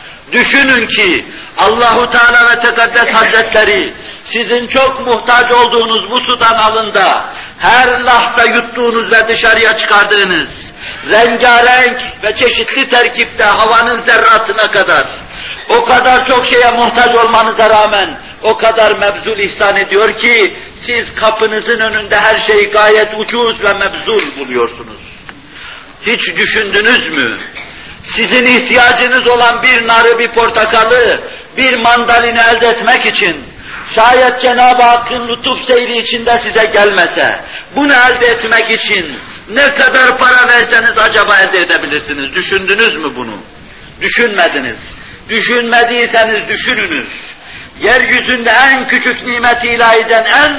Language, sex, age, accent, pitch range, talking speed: Turkish, male, 60-79, native, 225-245 Hz, 115 wpm